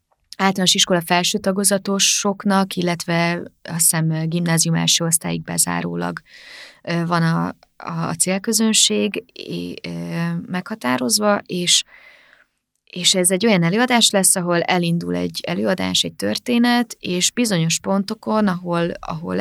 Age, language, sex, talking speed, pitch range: 20-39, Hungarian, female, 115 wpm, 165-190 Hz